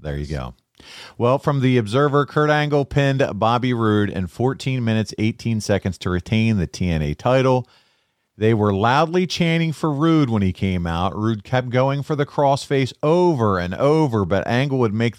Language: English